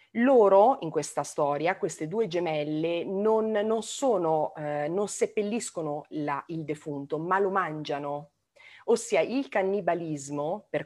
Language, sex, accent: Italian, female, native